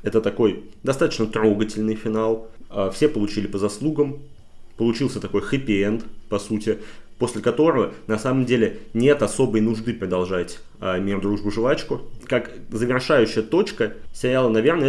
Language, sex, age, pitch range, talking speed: Russian, male, 20-39, 100-120 Hz, 125 wpm